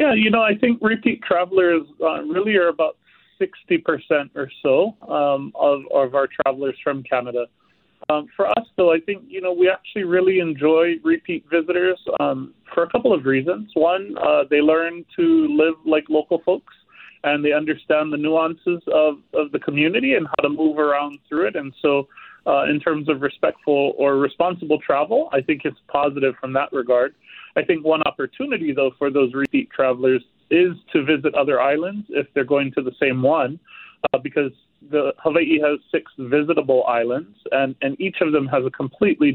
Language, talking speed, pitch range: English, 185 wpm, 140-180 Hz